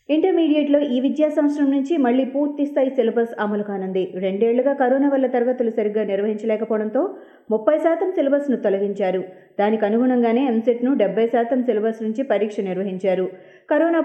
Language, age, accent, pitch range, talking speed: Telugu, 30-49, native, 215-275 Hz, 130 wpm